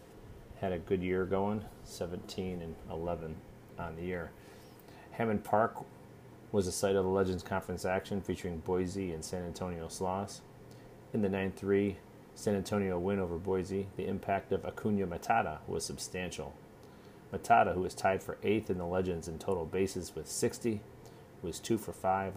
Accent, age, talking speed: American, 30-49, 165 wpm